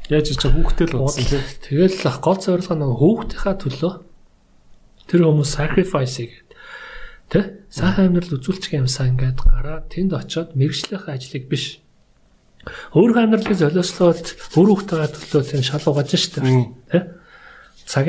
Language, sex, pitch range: Korean, male, 135-175 Hz